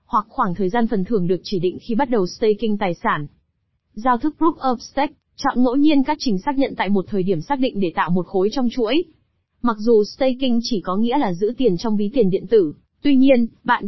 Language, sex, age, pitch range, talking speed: Vietnamese, female, 20-39, 195-250 Hz, 240 wpm